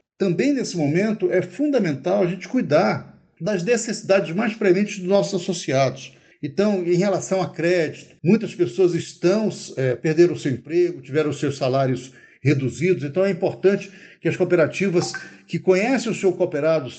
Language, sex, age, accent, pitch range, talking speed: Portuguese, male, 60-79, Brazilian, 150-190 Hz, 155 wpm